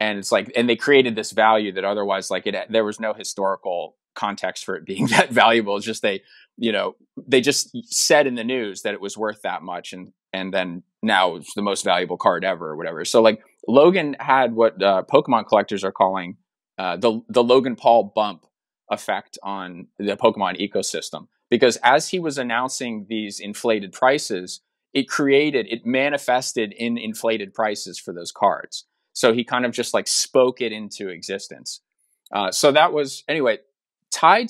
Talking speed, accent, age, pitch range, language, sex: 185 wpm, American, 30-49, 110-135 Hz, English, male